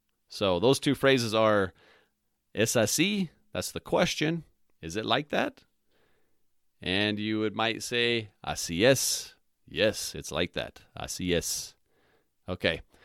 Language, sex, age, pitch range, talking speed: English, male, 30-49, 95-135 Hz, 130 wpm